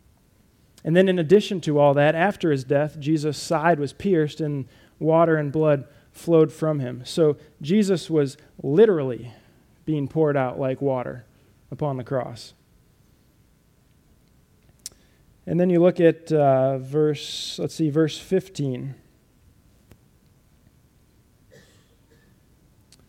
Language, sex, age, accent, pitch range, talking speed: English, male, 20-39, American, 135-165 Hz, 105 wpm